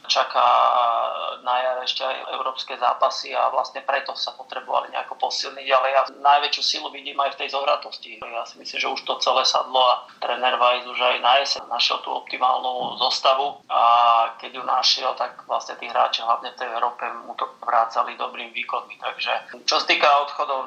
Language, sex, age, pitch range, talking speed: Slovak, male, 30-49, 125-135 Hz, 185 wpm